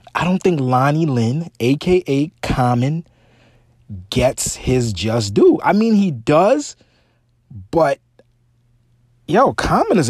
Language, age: English, 30-49